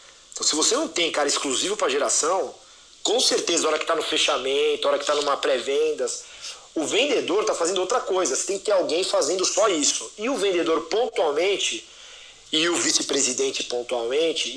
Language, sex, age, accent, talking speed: Portuguese, male, 40-59, Brazilian, 175 wpm